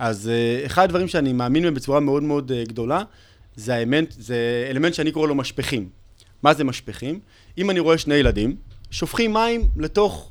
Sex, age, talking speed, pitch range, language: male, 30-49, 155 wpm, 125-180 Hz, Hebrew